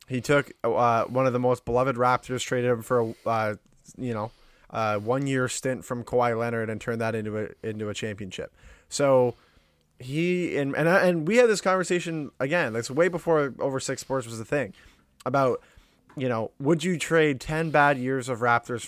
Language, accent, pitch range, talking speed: English, American, 115-140 Hz, 195 wpm